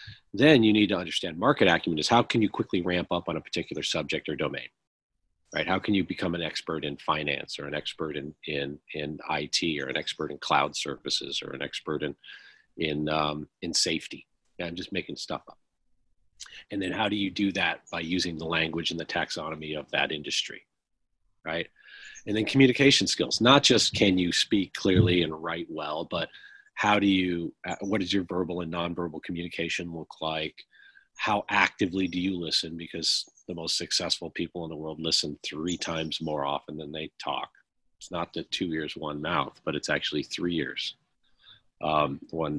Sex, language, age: male, English, 40-59